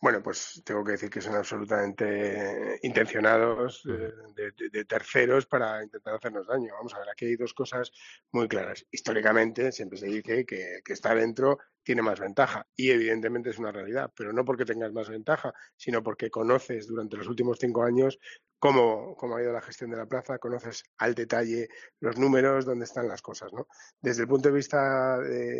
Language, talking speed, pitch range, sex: Spanish, 195 wpm, 110-125 Hz, male